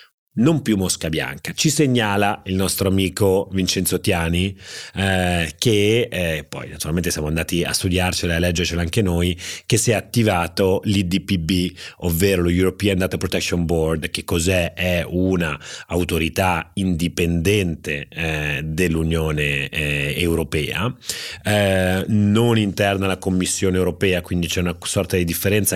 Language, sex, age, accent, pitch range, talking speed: Italian, male, 30-49, native, 80-105 Hz, 130 wpm